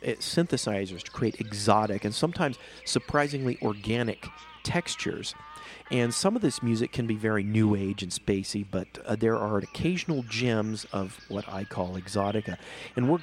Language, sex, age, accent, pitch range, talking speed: English, male, 40-59, American, 105-140 Hz, 155 wpm